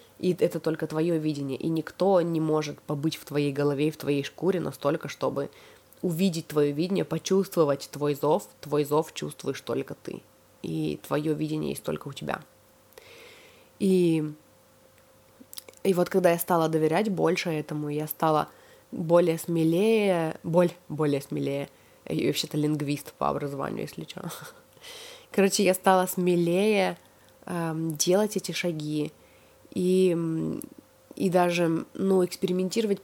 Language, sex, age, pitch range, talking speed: Russian, female, 20-39, 160-200 Hz, 130 wpm